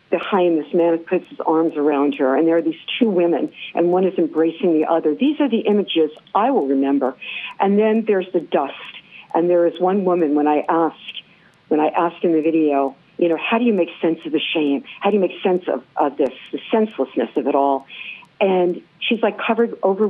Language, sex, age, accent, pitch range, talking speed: English, female, 50-69, American, 155-200 Hz, 225 wpm